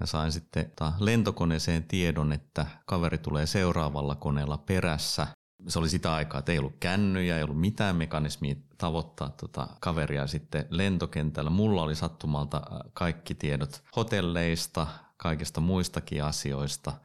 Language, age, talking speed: Finnish, 30-49, 125 wpm